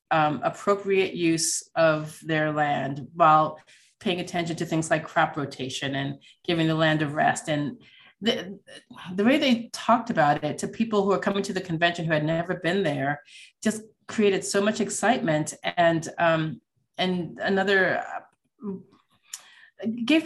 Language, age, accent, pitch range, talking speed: English, 30-49, American, 150-195 Hz, 155 wpm